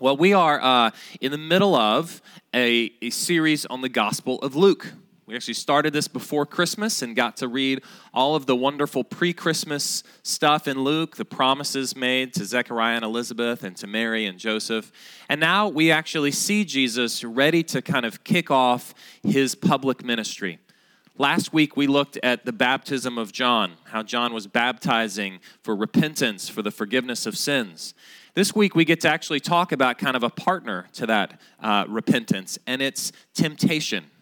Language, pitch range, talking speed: English, 120-160 Hz, 175 wpm